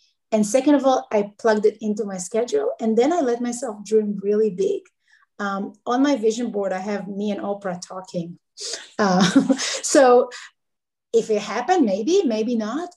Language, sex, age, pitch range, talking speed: English, female, 30-49, 215-285 Hz, 170 wpm